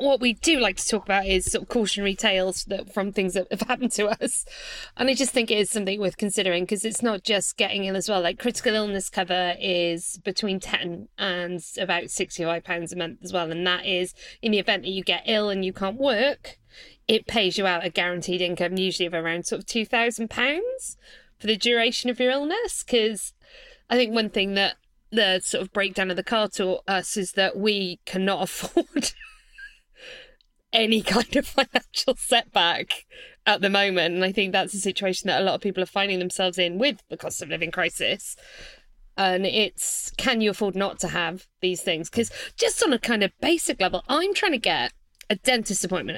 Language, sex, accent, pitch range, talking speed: English, female, British, 185-250 Hz, 205 wpm